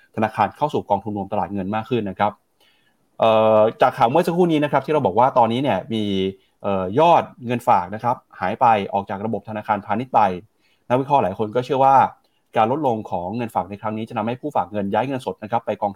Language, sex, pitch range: Thai, male, 105-145 Hz